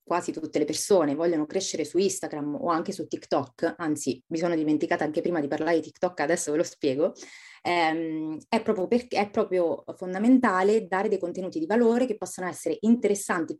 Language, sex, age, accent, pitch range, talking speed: Italian, female, 30-49, native, 160-220 Hz, 180 wpm